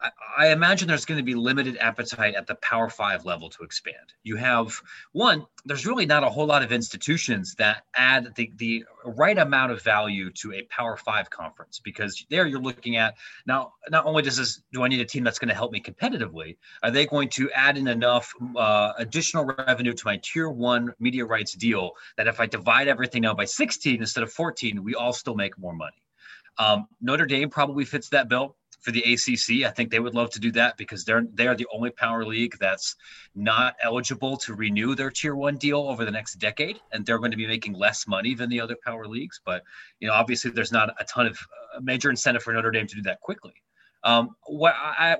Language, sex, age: English, male, 30-49